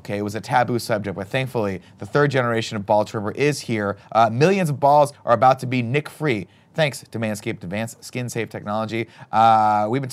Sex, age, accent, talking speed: male, 30-49, American, 210 wpm